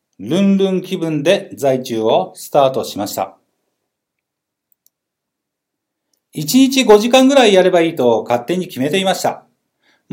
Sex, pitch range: male, 140-200 Hz